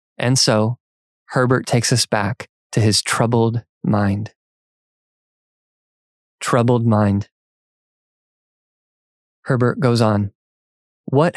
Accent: American